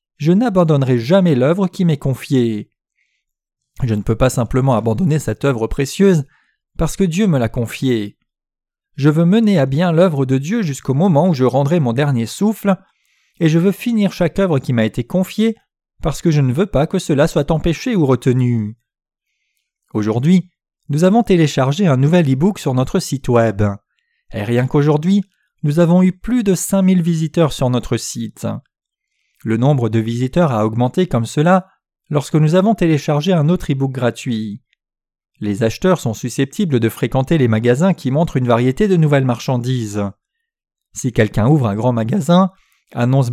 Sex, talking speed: male, 170 wpm